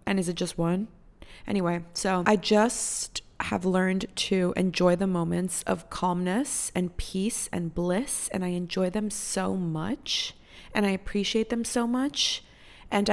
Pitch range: 175-210 Hz